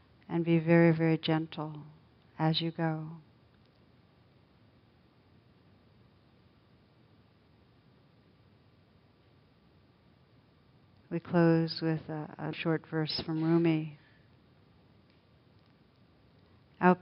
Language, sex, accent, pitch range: English, female, American, 150-175 Hz